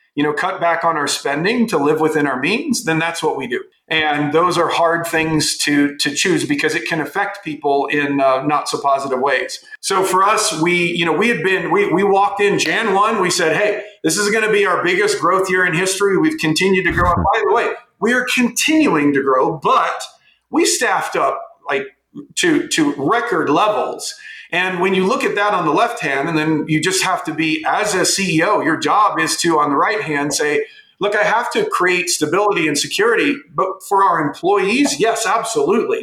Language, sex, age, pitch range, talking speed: English, male, 40-59, 155-210 Hz, 215 wpm